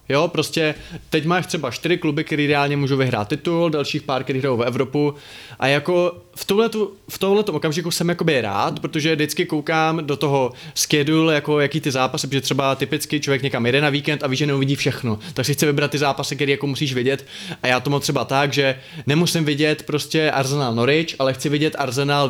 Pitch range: 135-165 Hz